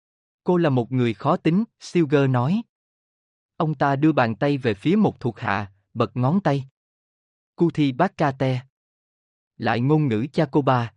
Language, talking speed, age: Vietnamese, 165 wpm, 20-39